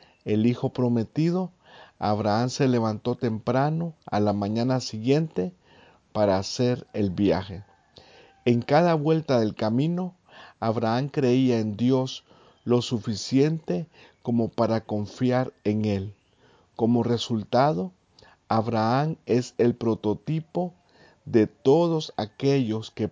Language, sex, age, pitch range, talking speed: Spanish, male, 50-69, 105-135 Hz, 105 wpm